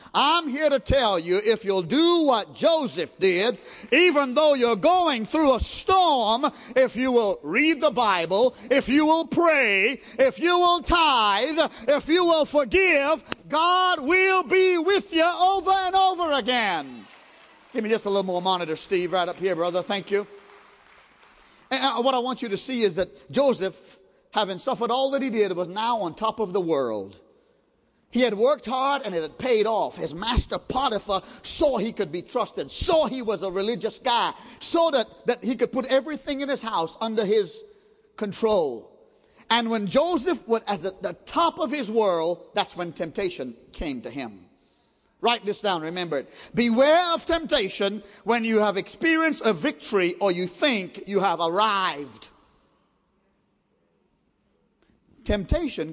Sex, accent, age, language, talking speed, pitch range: male, American, 40-59, English, 165 wpm, 200-315 Hz